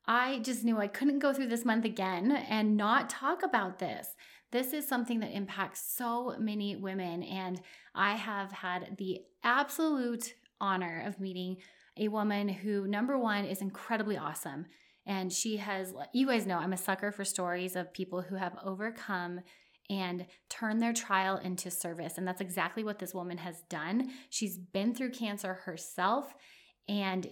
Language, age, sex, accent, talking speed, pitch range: English, 20-39, female, American, 165 wpm, 185-230 Hz